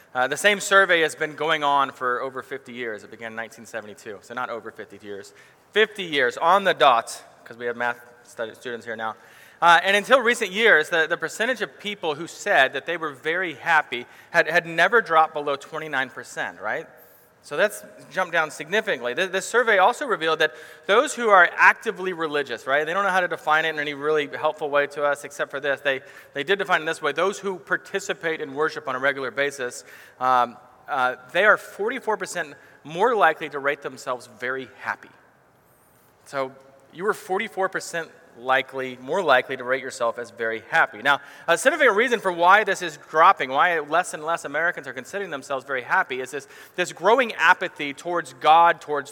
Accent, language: American, English